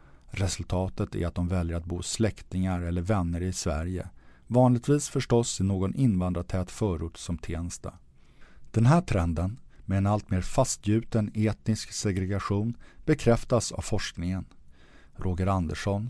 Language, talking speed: English, 125 wpm